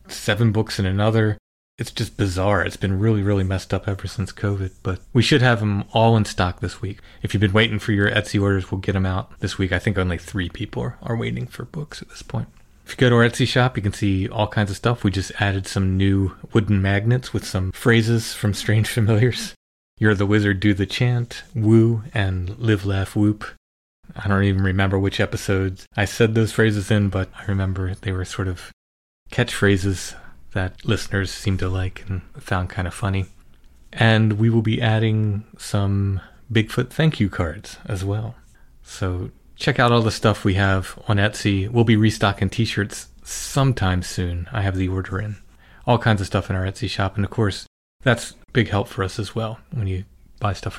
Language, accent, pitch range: English, American, 95-115 Hz